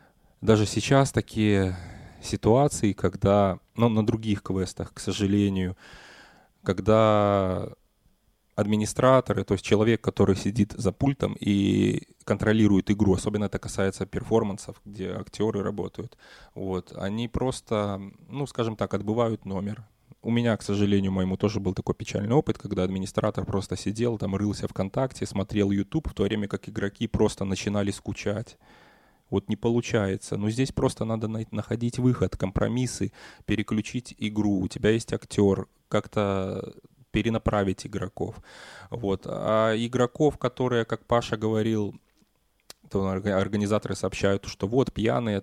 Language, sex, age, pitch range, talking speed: Russian, male, 20-39, 100-115 Hz, 130 wpm